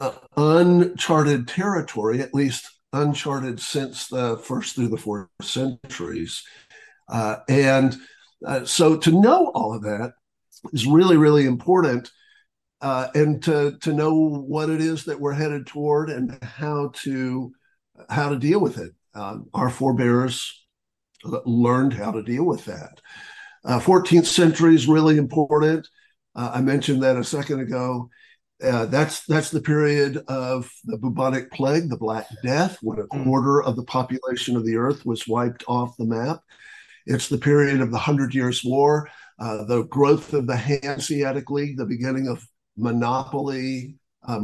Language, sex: English, male